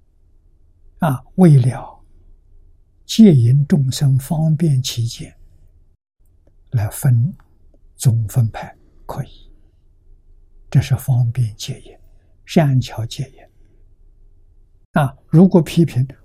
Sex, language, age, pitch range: male, Chinese, 60-79, 80-135 Hz